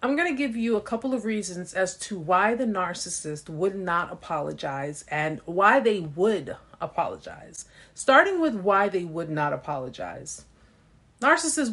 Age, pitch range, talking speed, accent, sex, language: 30-49, 165-215 Hz, 150 wpm, American, female, English